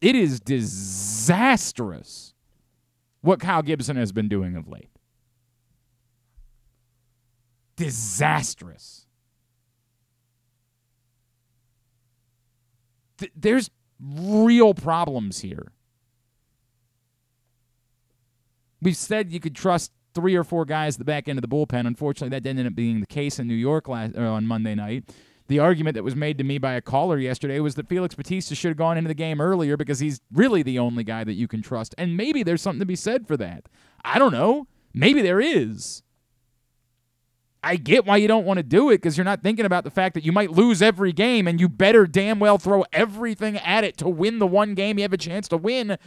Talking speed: 180 wpm